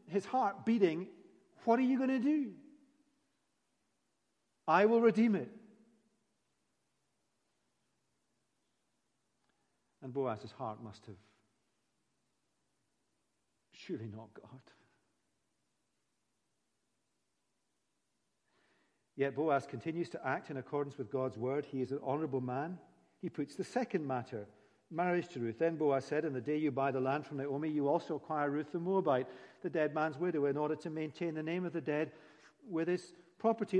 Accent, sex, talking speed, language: British, male, 140 wpm, English